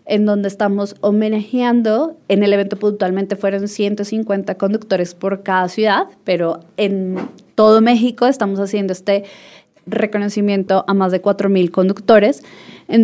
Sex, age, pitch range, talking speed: female, 20-39, 195-230 Hz, 130 wpm